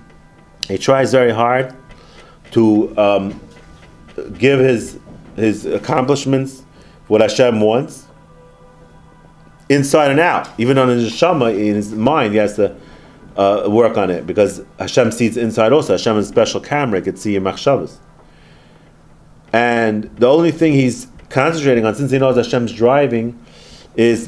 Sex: male